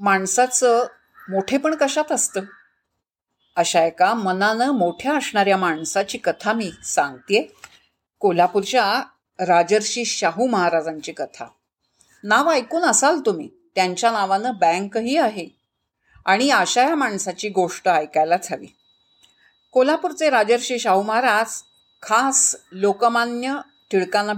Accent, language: native, Marathi